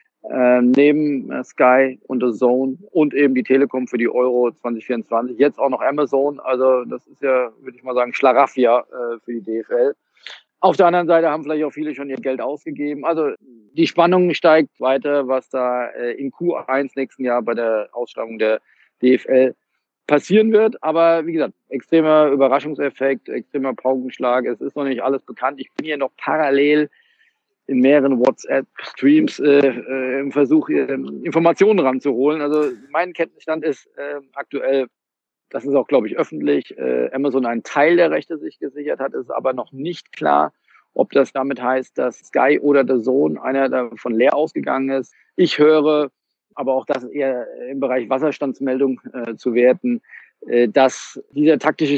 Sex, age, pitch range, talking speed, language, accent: male, 40-59, 125-150 Hz, 170 wpm, German, German